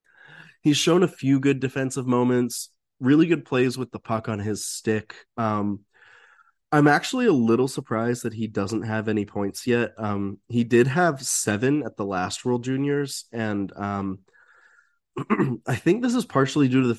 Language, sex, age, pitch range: English, male, 20-39, 100-130 Hz